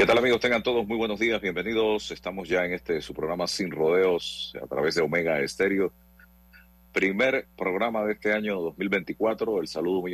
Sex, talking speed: male, 185 wpm